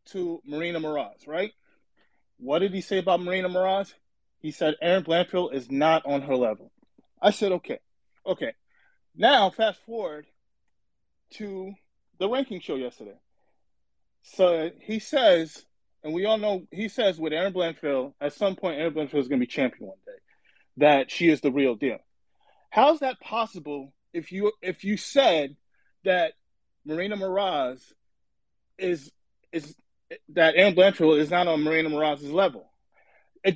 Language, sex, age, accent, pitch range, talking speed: English, male, 20-39, American, 165-240 Hz, 150 wpm